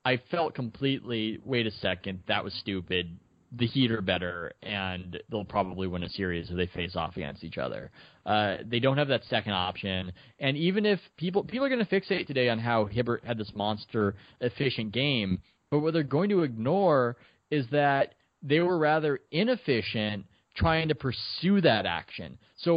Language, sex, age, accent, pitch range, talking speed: English, male, 20-39, American, 105-155 Hz, 180 wpm